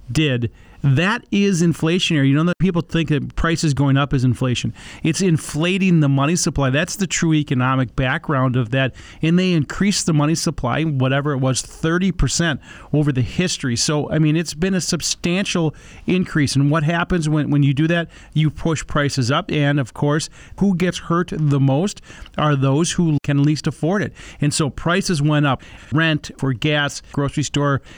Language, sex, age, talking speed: English, male, 40-59, 180 wpm